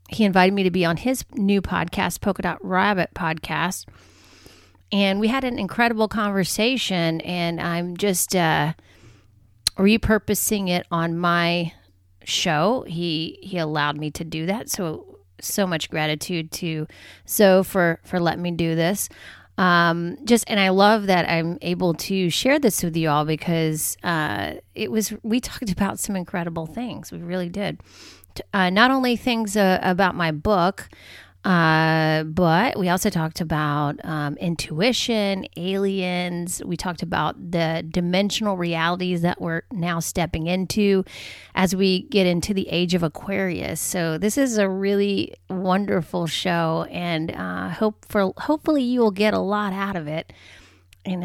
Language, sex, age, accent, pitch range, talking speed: English, female, 30-49, American, 160-195 Hz, 155 wpm